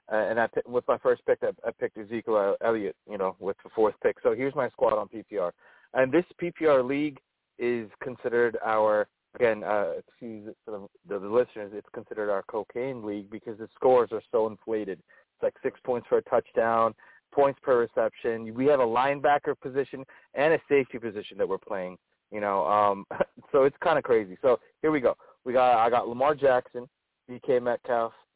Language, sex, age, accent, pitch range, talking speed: English, male, 30-49, American, 115-180 Hz, 190 wpm